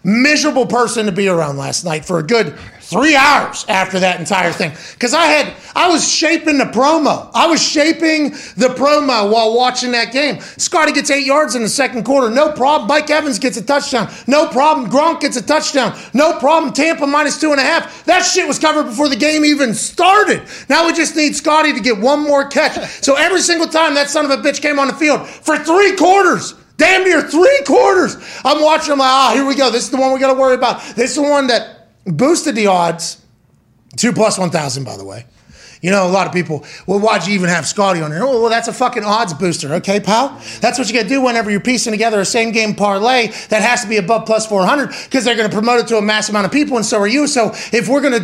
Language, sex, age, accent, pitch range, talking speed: English, male, 30-49, American, 225-300 Hz, 240 wpm